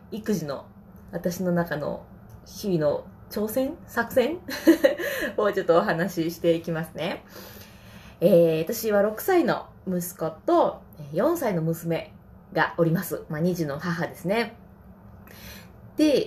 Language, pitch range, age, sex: Japanese, 160-220 Hz, 20-39, female